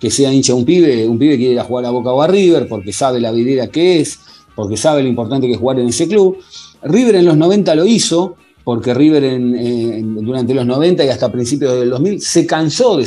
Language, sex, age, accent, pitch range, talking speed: Spanish, male, 40-59, Argentinian, 125-170 Hz, 240 wpm